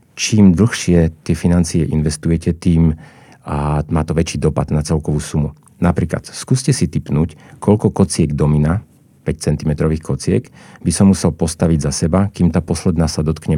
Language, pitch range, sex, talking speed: Slovak, 80-90 Hz, male, 155 wpm